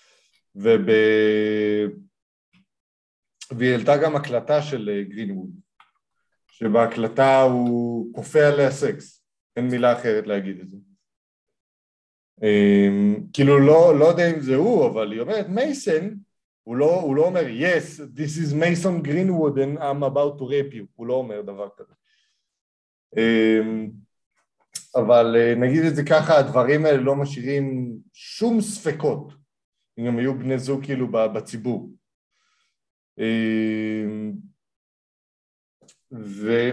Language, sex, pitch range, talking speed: Hebrew, male, 115-145 Hz, 115 wpm